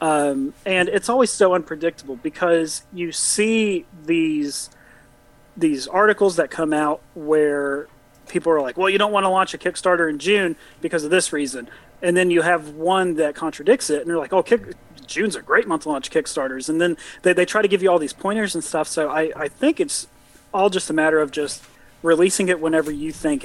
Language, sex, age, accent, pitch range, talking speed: English, male, 30-49, American, 150-190 Hz, 210 wpm